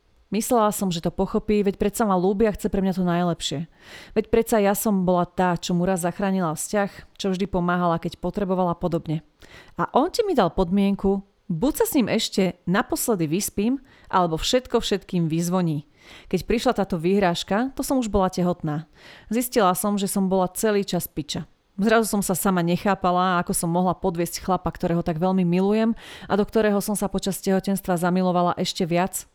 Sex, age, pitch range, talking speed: female, 30-49, 175-210 Hz, 180 wpm